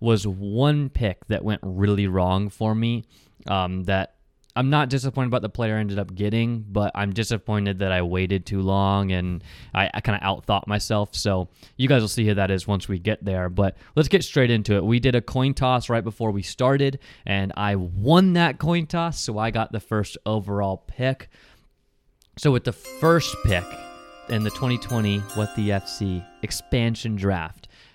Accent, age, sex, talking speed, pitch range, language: American, 20-39, male, 190 wpm, 95-120 Hz, English